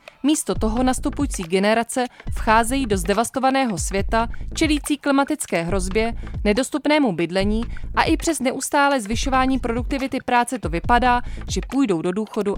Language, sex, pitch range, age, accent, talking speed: Czech, female, 190-270 Hz, 20-39, native, 125 wpm